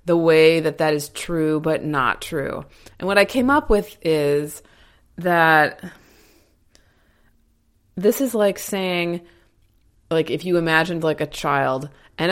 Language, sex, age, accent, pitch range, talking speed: English, female, 20-39, American, 150-200 Hz, 135 wpm